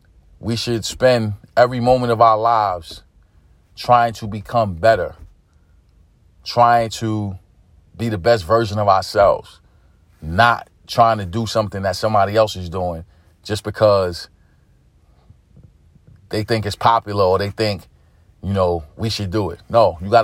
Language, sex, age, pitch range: English, male, 40-59, 90-115 Hz